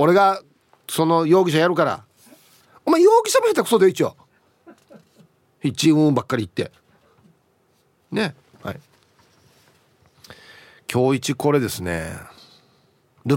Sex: male